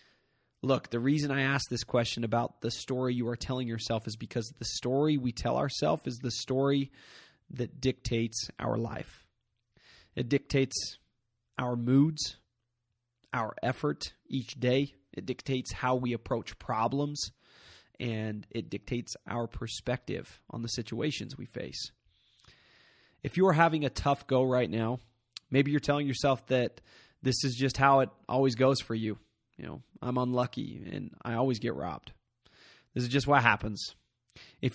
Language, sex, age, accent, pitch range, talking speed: English, male, 20-39, American, 120-140 Hz, 155 wpm